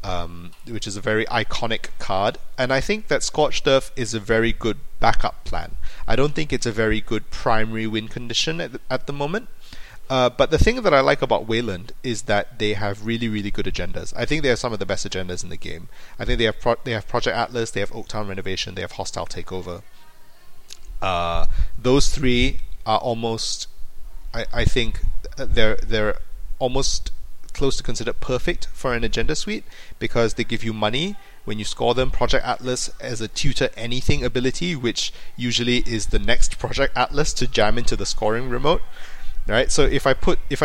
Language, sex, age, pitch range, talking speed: English, male, 30-49, 105-125 Hz, 200 wpm